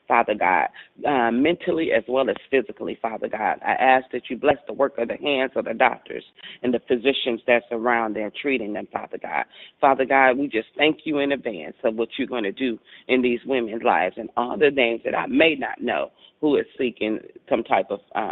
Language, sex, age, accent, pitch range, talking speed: English, female, 40-59, American, 115-150 Hz, 220 wpm